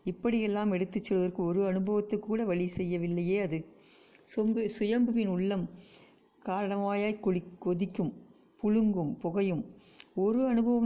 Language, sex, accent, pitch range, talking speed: Tamil, female, native, 180-215 Hz, 105 wpm